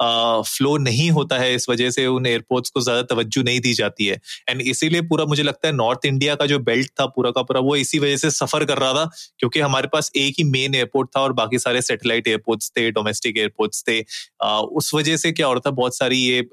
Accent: native